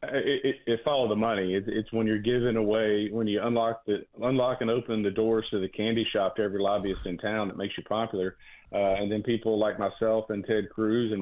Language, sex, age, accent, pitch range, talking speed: English, male, 40-59, American, 105-125 Hz, 235 wpm